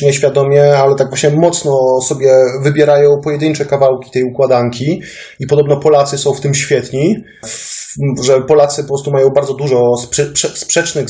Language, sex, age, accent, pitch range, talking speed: English, male, 30-49, Polish, 130-165 Hz, 140 wpm